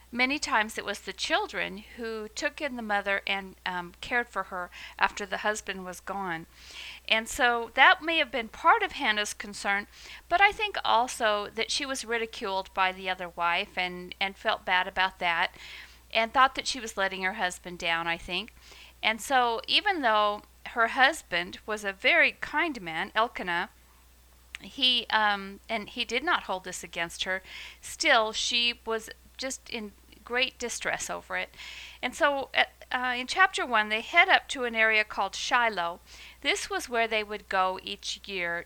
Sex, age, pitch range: female, 50-69, 185-245 Hz